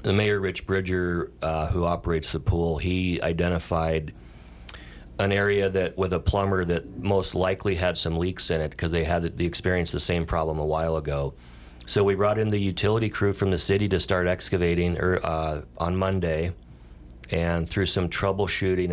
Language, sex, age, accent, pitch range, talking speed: English, male, 40-59, American, 75-95 Hz, 185 wpm